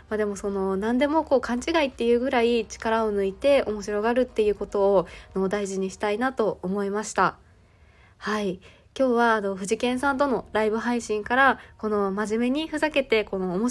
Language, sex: Japanese, female